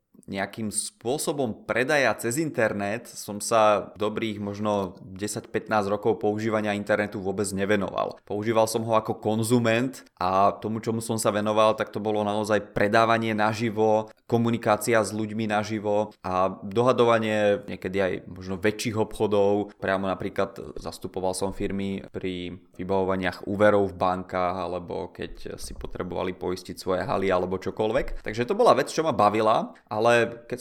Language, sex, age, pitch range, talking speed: Czech, male, 20-39, 100-120 Hz, 140 wpm